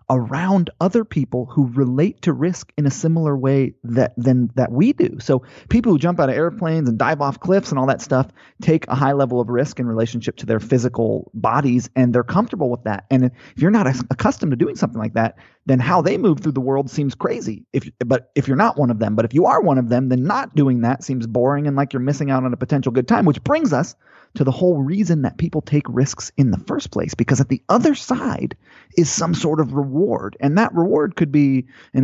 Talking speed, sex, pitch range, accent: 240 wpm, male, 125-150 Hz, American